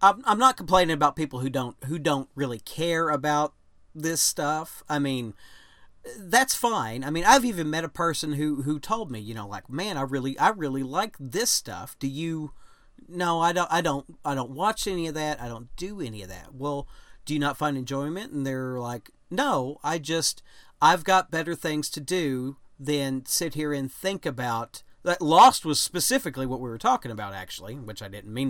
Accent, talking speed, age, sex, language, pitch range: American, 210 wpm, 40-59, male, English, 130-160 Hz